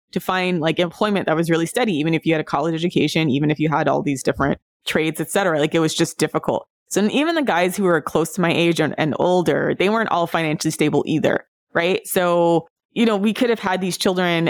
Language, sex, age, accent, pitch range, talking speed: English, female, 20-39, American, 155-185 Hz, 245 wpm